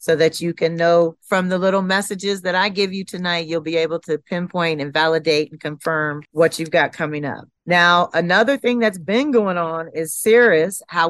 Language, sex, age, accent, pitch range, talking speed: English, female, 30-49, American, 155-195 Hz, 205 wpm